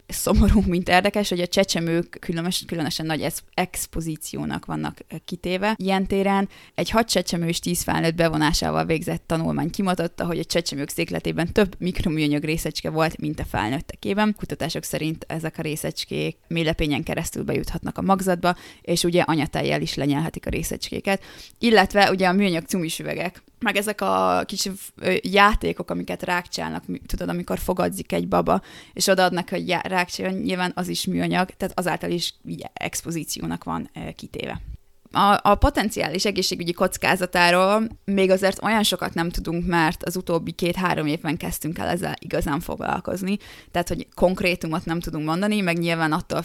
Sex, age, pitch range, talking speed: female, 20-39, 160-185 Hz, 145 wpm